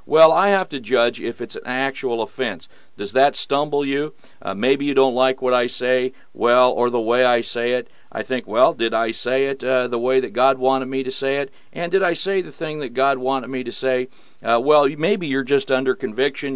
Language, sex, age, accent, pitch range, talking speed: English, male, 50-69, American, 125-150 Hz, 235 wpm